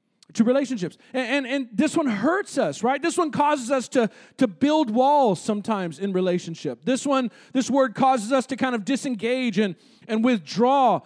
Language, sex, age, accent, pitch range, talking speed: English, male, 40-59, American, 220-290 Hz, 185 wpm